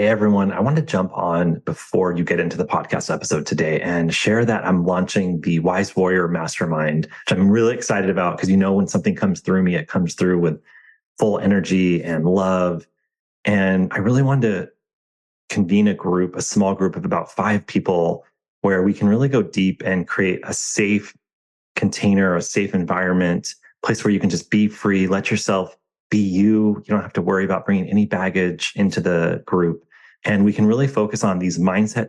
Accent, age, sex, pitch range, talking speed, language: American, 30-49, male, 90-105 Hz, 195 wpm, English